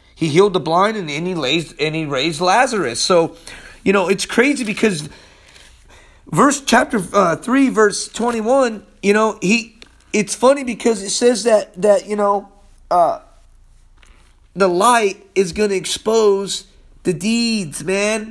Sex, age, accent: male, 40-59, American